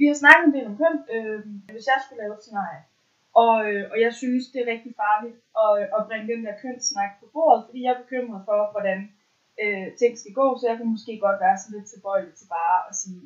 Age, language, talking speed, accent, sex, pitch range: 20-39, Danish, 245 wpm, native, female, 175-225 Hz